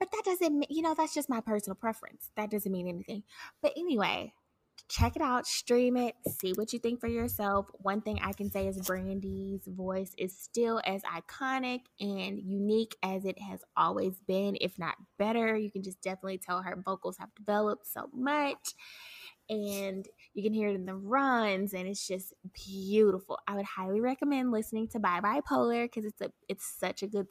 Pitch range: 190-240 Hz